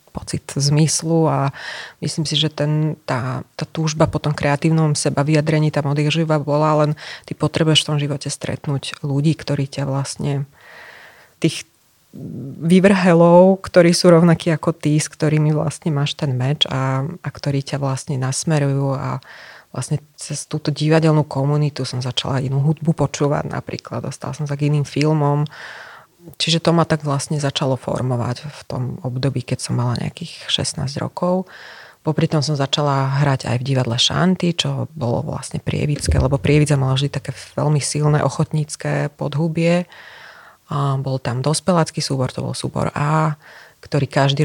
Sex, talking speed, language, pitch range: female, 155 wpm, Slovak, 140-155 Hz